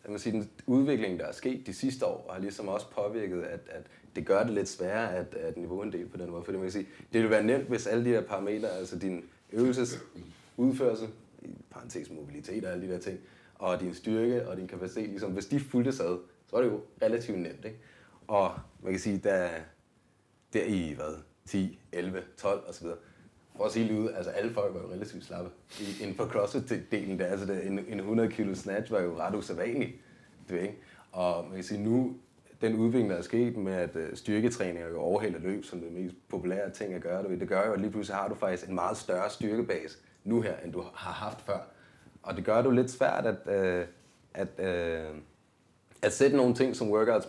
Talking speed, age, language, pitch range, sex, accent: 210 wpm, 30-49, Danish, 90-120 Hz, male, native